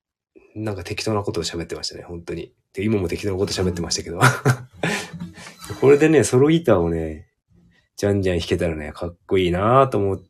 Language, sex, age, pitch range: Japanese, male, 20-39, 85-100 Hz